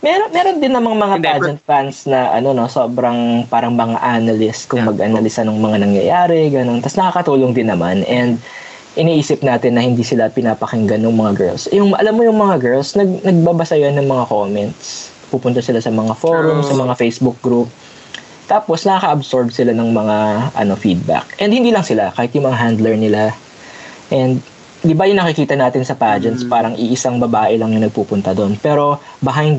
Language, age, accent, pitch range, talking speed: Filipino, 20-39, native, 115-150 Hz, 175 wpm